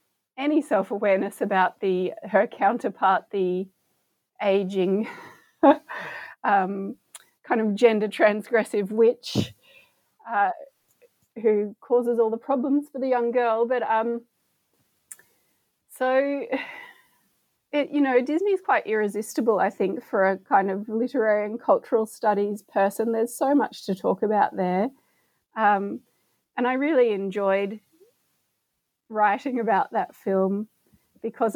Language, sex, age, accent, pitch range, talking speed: English, female, 30-49, Australian, 205-255 Hz, 120 wpm